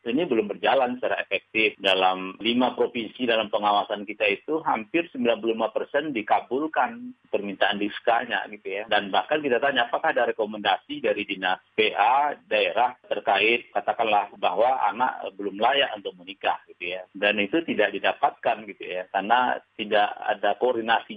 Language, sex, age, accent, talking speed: Indonesian, male, 40-59, native, 145 wpm